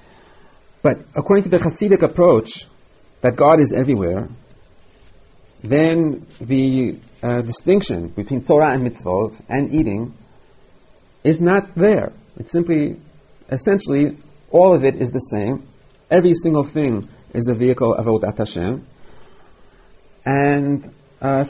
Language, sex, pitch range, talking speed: English, male, 110-155 Hz, 120 wpm